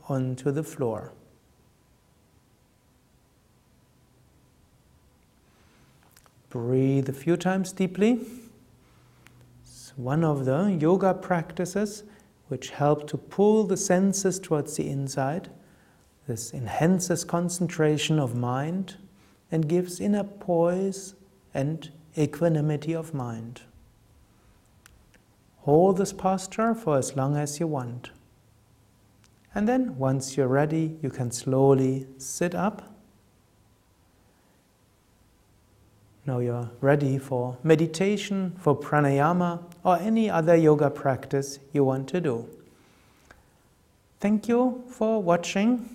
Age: 60-79